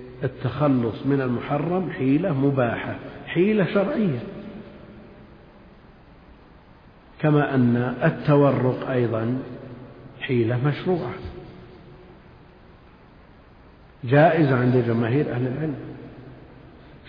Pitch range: 125-145 Hz